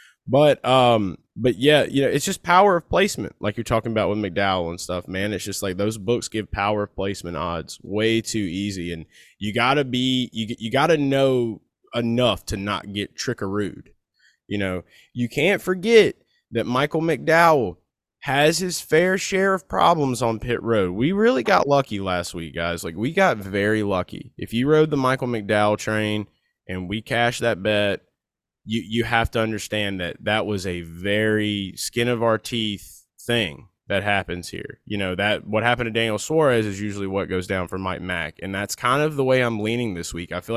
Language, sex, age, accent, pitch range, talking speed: English, male, 20-39, American, 95-120 Hz, 195 wpm